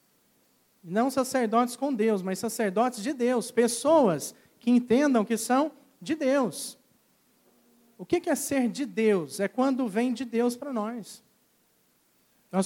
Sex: male